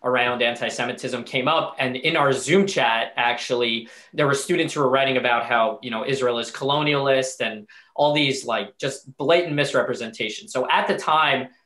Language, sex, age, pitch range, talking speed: English, male, 20-39, 130-160 Hz, 175 wpm